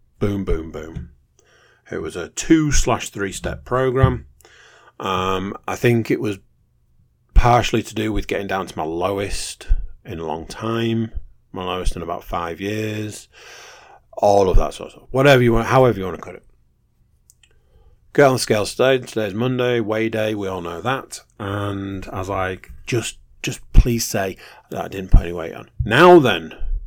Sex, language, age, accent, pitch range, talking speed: male, English, 40-59, British, 95-120 Hz, 180 wpm